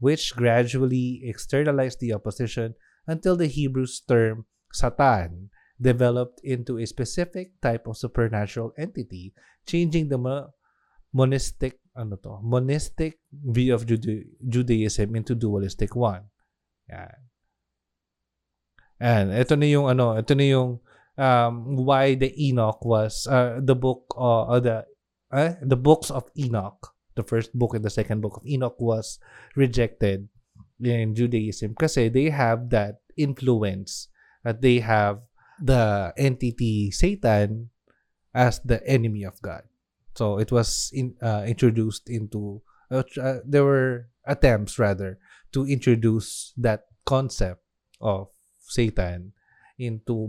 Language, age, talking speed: Filipino, 20-39, 125 wpm